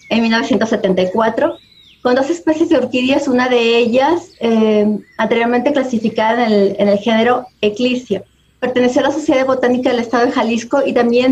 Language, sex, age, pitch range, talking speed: Spanish, female, 30-49, 225-270 Hz, 160 wpm